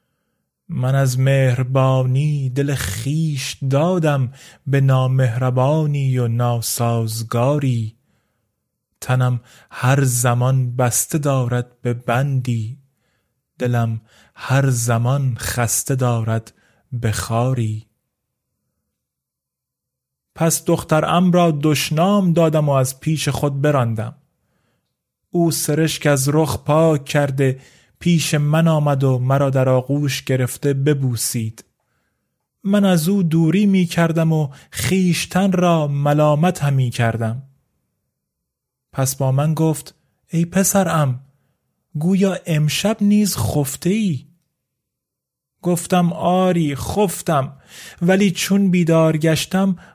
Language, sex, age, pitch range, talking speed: Persian, male, 20-39, 130-165 Hz, 95 wpm